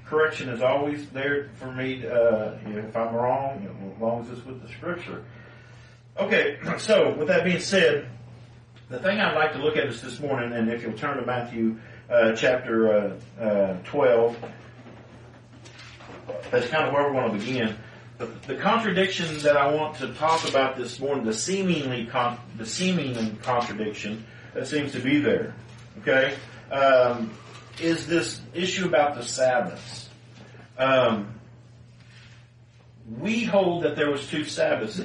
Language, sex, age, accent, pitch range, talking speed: English, male, 40-59, American, 115-145 Hz, 160 wpm